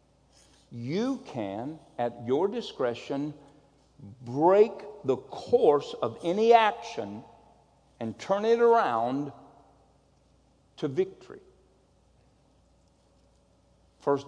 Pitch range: 125-210 Hz